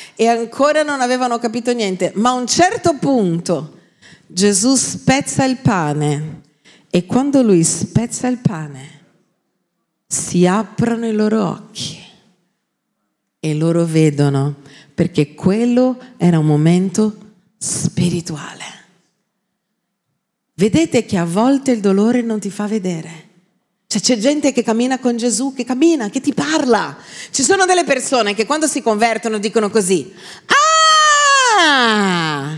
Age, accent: 40-59, native